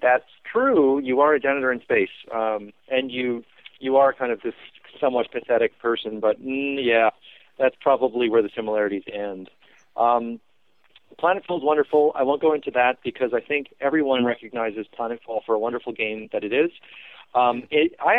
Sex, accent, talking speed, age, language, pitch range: male, American, 170 wpm, 30-49, English, 115-140 Hz